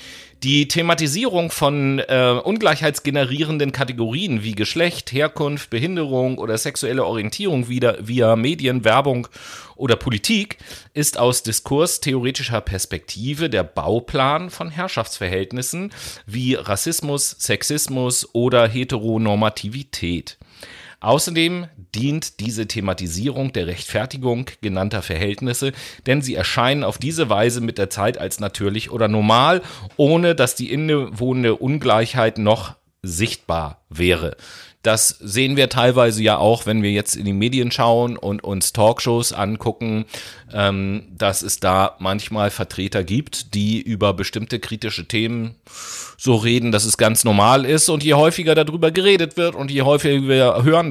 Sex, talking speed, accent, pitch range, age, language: male, 130 wpm, German, 105-140 Hz, 40-59, German